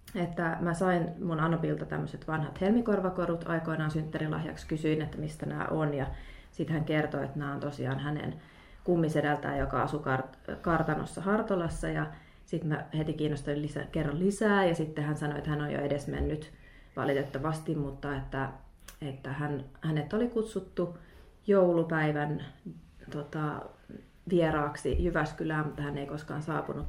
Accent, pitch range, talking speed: native, 140-165 Hz, 140 wpm